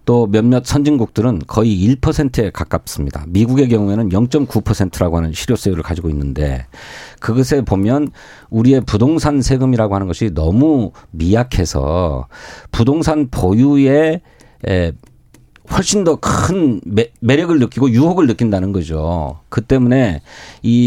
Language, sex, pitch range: Korean, male, 95-140 Hz